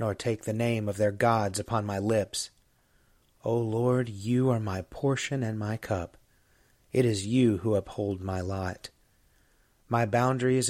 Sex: male